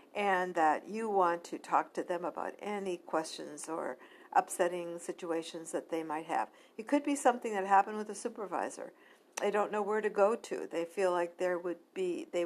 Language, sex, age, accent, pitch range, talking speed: English, female, 60-79, American, 170-225 Hz, 195 wpm